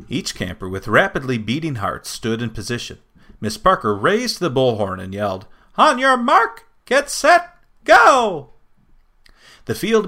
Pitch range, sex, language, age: 110-175 Hz, male, English, 40-59